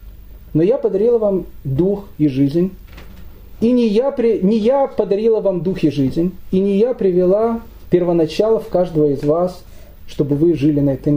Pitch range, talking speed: 155-220 Hz, 165 wpm